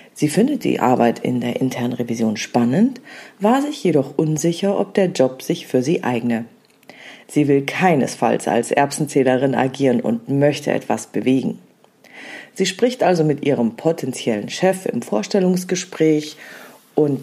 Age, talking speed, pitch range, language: 40-59, 140 wpm, 140-190 Hz, German